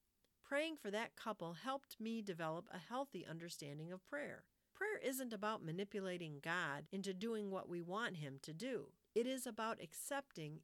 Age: 50-69